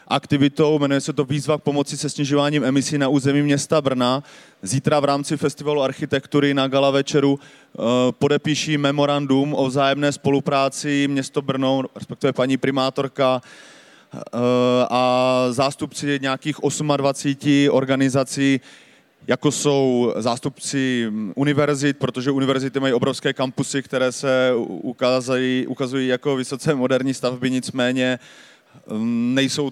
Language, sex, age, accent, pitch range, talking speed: Czech, male, 30-49, native, 130-145 Hz, 115 wpm